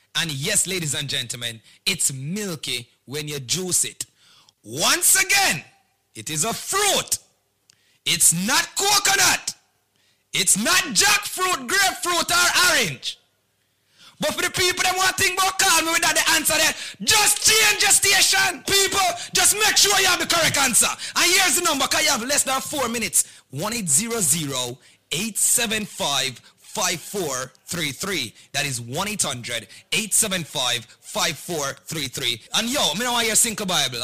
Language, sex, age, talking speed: English, male, 30-49, 145 wpm